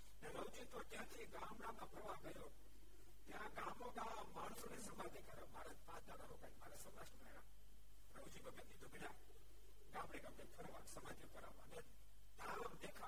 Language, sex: Gujarati, male